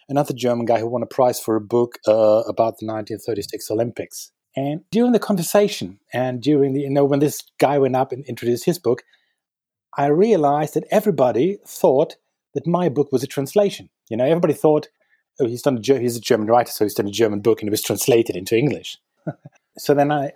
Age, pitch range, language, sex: 30-49, 115-155 Hz, English, male